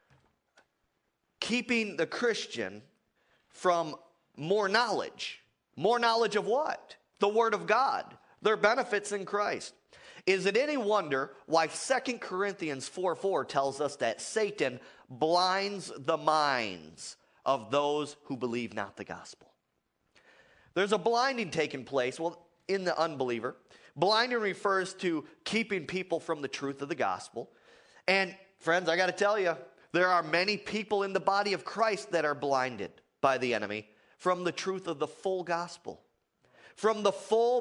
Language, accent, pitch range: English, American, 150-210 Hz